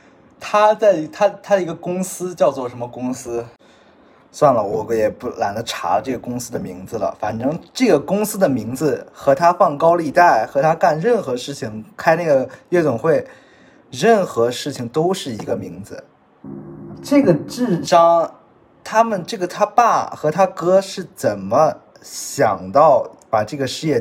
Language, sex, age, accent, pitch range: Chinese, male, 20-39, native, 120-200 Hz